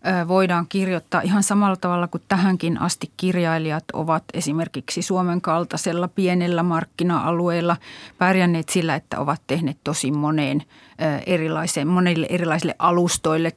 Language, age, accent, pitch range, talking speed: Finnish, 30-49, native, 165-185 Hz, 110 wpm